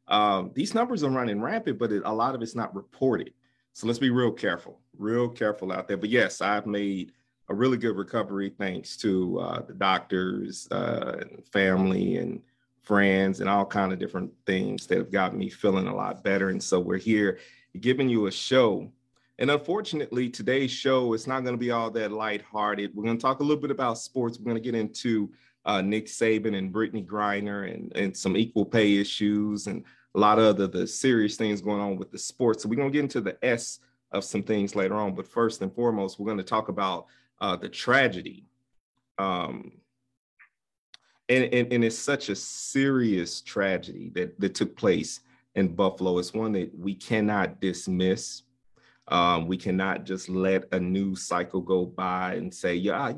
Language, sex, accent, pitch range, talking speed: English, male, American, 95-125 Hz, 195 wpm